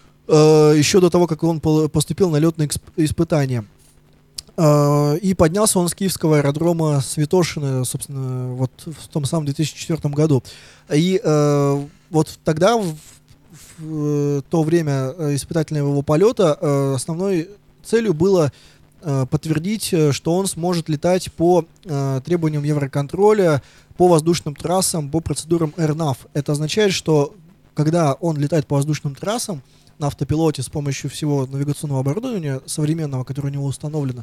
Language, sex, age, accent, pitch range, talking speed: Russian, male, 20-39, native, 140-170 Hz, 120 wpm